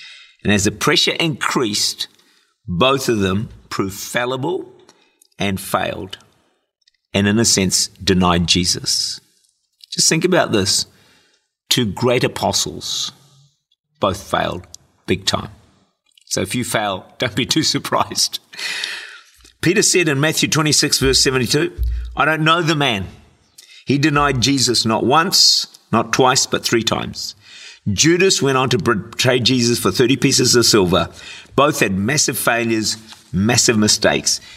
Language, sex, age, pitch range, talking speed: English, male, 50-69, 105-150 Hz, 130 wpm